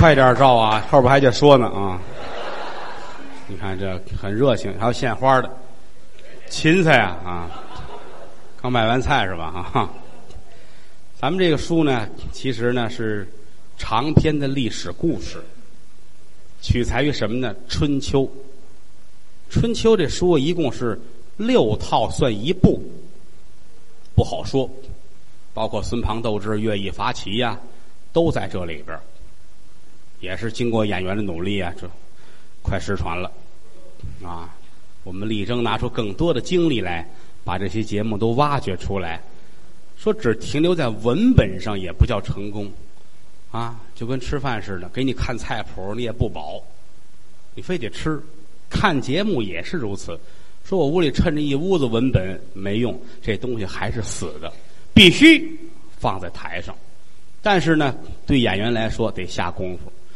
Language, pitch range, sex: English, 100-135 Hz, male